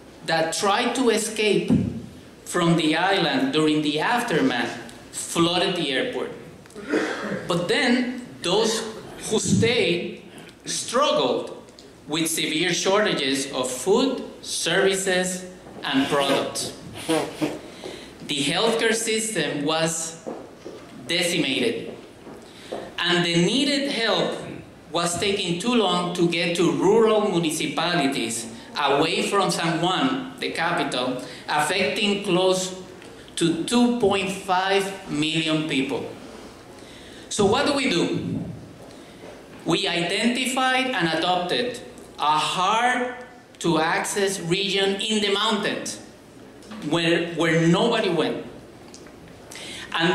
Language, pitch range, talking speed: English, 165-225 Hz, 90 wpm